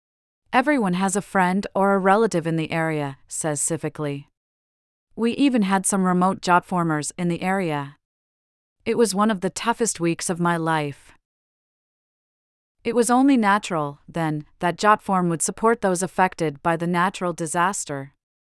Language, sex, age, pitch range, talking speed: English, female, 40-59, 160-195 Hz, 150 wpm